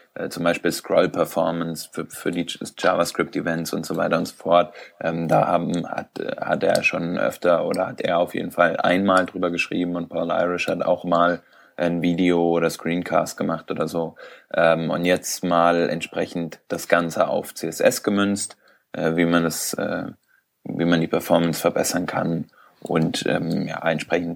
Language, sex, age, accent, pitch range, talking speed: German, male, 20-39, German, 85-95 Hz, 170 wpm